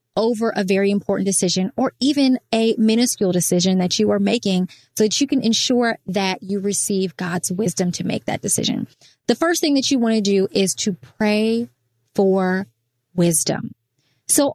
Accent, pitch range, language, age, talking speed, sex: American, 180-235 Hz, English, 20-39, 170 wpm, female